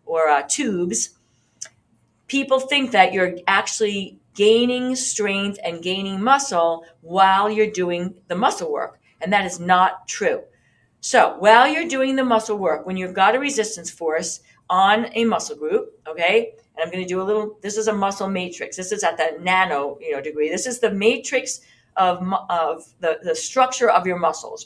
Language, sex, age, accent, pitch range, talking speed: English, female, 50-69, American, 185-255 Hz, 180 wpm